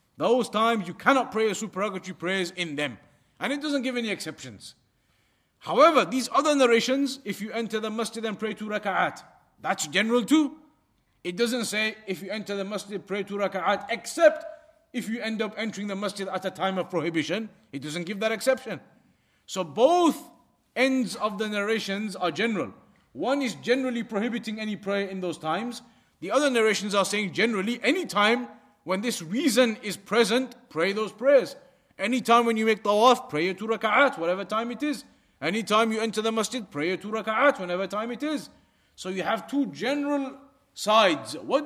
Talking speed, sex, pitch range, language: 185 wpm, male, 195-245 Hz, English